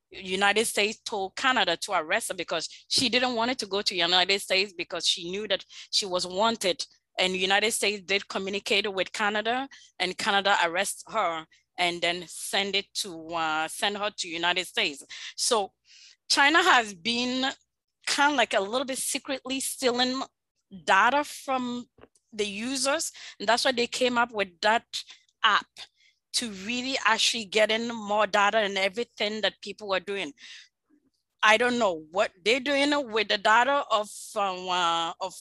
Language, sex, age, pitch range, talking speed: English, female, 20-39, 190-250 Hz, 165 wpm